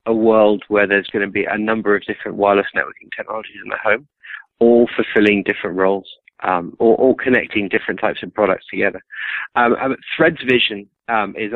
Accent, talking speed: British, 180 wpm